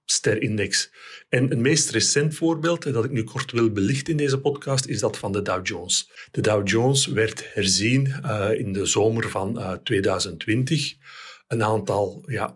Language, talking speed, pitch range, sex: Dutch, 175 wpm, 105-135 Hz, male